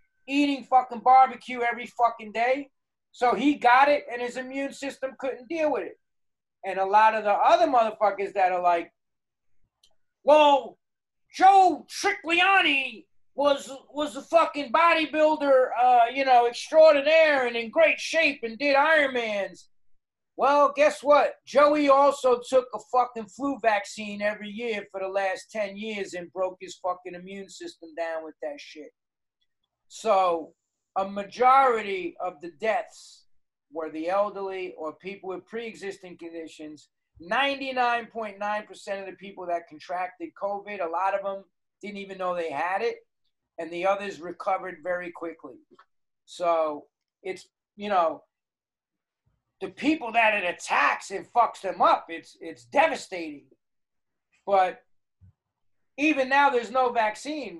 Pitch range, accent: 185-275 Hz, American